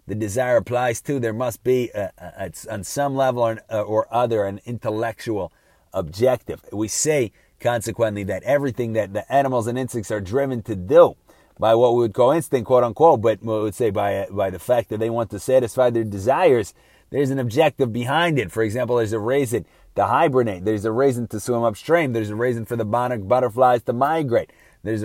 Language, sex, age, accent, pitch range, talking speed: English, male, 30-49, American, 110-130 Hz, 200 wpm